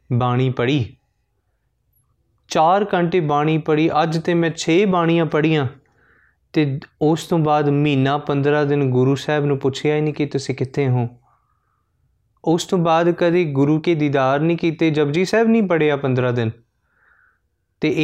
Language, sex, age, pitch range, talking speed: Punjabi, male, 20-39, 130-160 Hz, 150 wpm